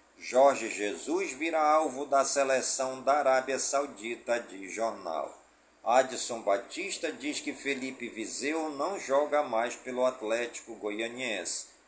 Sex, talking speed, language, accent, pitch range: male, 115 wpm, Portuguese, Brazilian, 120-160 Hz